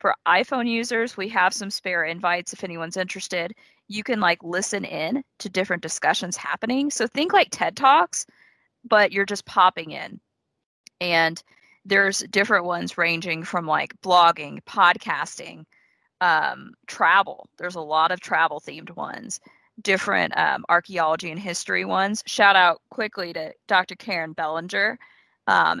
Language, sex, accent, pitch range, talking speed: English, female, American, 170-215 Hz, 145 wpm